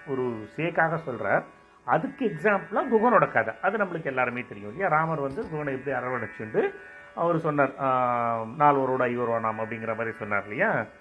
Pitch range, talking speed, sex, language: 125-180 Hz, 155 wpm, male, Tamil